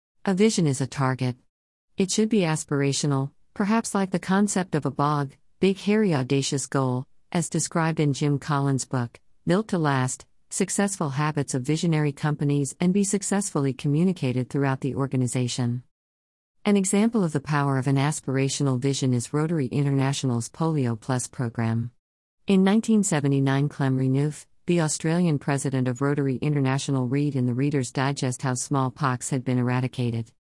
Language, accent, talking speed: English, American, 150 wpm